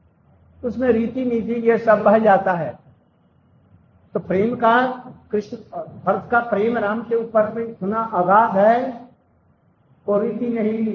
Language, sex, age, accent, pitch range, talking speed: Hindi, male, 60-79, native, 180-225 Hz, 140 wpm